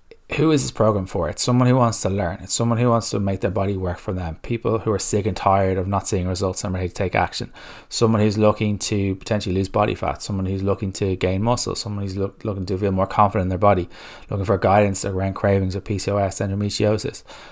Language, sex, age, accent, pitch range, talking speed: English, male, 20-39, Irish, 95-110 Hz, 235 wpm